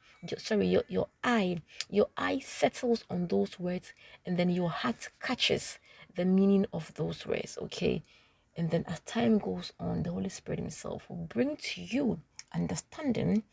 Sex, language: female, English